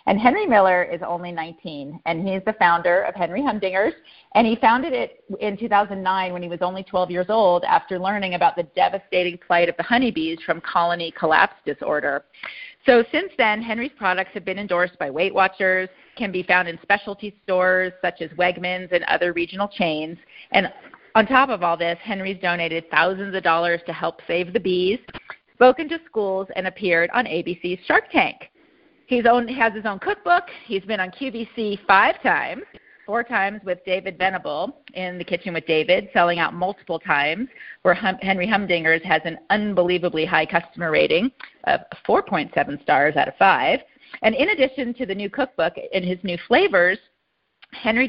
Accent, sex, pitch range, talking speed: American, female, 175-220 Hz, 175 wpm